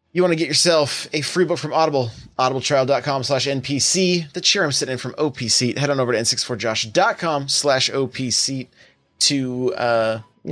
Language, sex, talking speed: English, male, 170 wpm